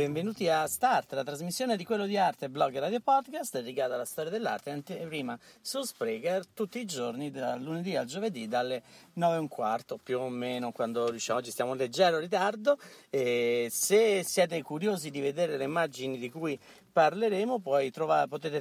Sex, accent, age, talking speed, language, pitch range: male, native, 50-69, 170 wpm, Italian, 130-210 Hz